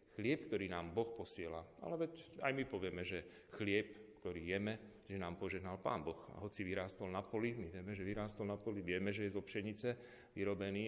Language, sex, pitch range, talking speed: Slovak, male, 90-115 Hz, 195 wpm